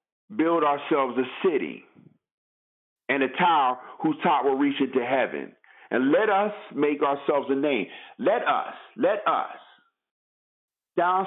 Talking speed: 135 wpm